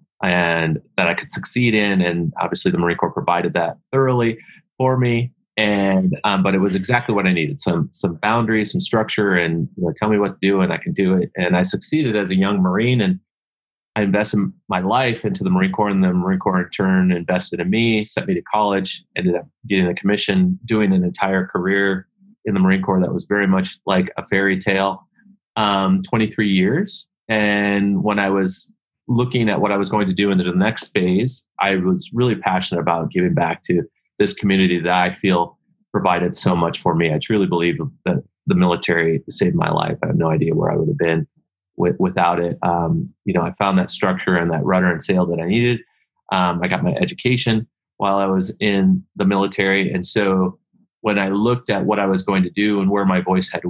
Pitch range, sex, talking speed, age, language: 90-115 Hz, male, 215 wpm, 30-49, English